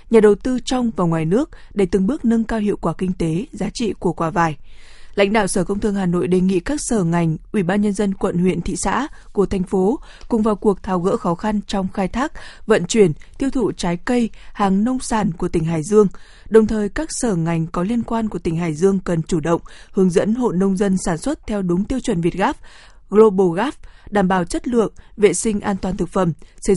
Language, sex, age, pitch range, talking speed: Vietnamese, female, 20-39, 180-220 Hz, 240 wpm